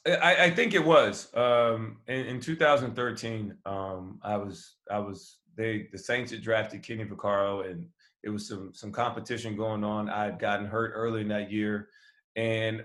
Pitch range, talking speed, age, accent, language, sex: 105-120 Hz, 170 wpm, 20-39, American, English, male